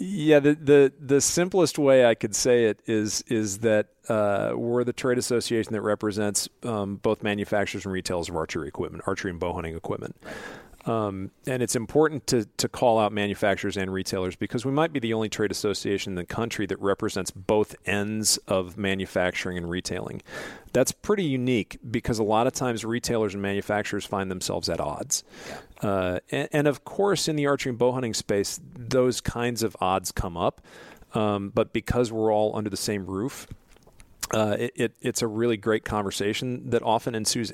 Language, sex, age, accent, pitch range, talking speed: English, male, 40-59, American, 100-125 Hz, 185 wpm